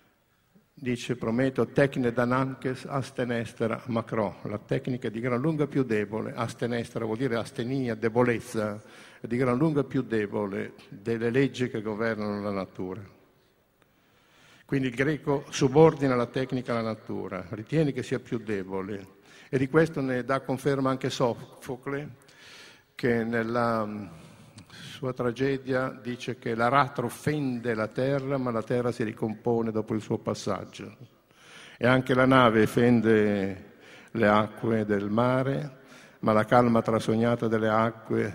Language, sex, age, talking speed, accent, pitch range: Italian, male, 50-69, 135 wpm, native, 110-130 Hz